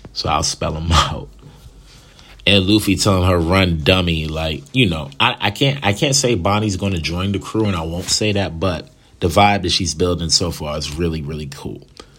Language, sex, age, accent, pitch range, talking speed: English, male, 30-49, American, 80-100 Hz, 200 wpm